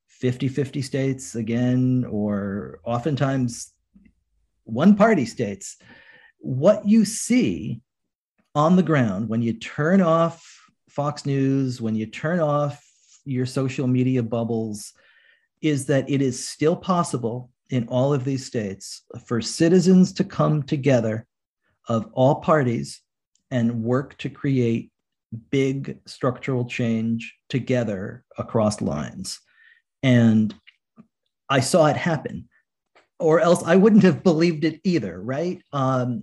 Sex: male